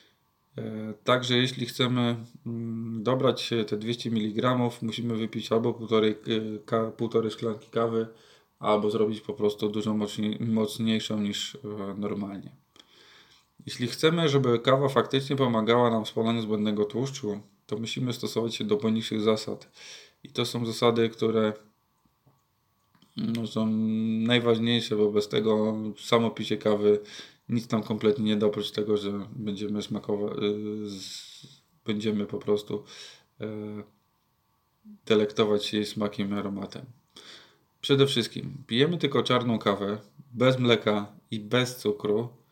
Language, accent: Polish, native